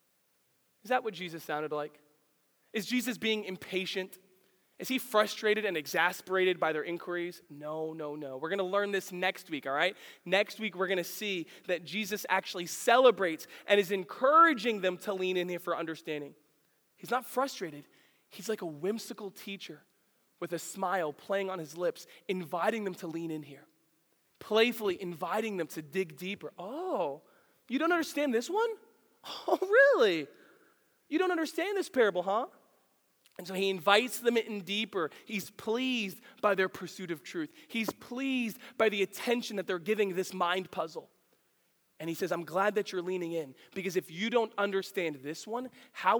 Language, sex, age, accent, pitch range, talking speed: English, male, 20-39, American, 180-250 Hz, 175 wpm